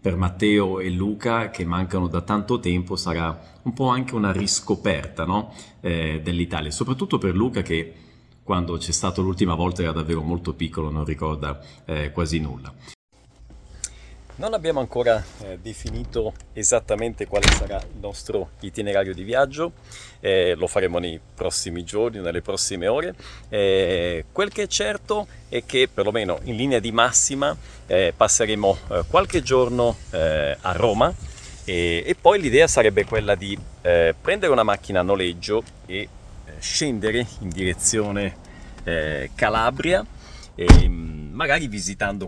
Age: 40-59